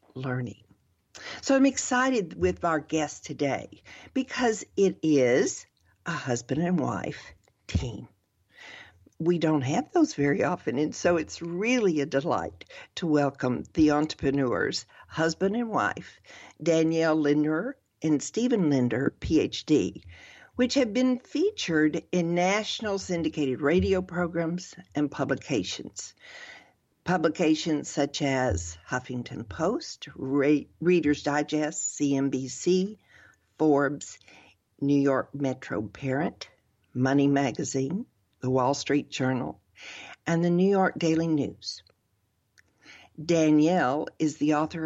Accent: American